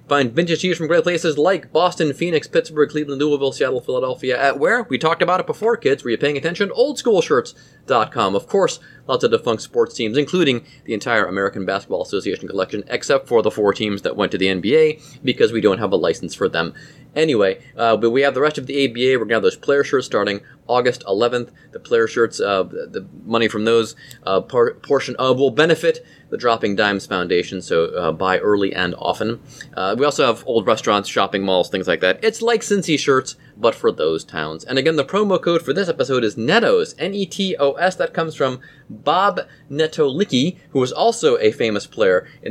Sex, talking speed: male, 205 wpm